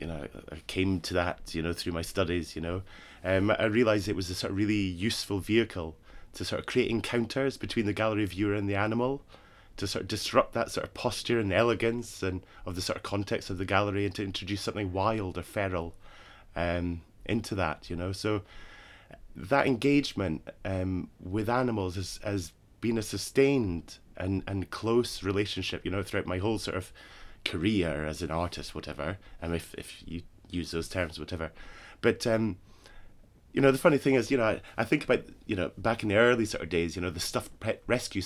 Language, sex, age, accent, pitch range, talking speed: English, male, 20-39, British, 90-110 Hz, 205 wpm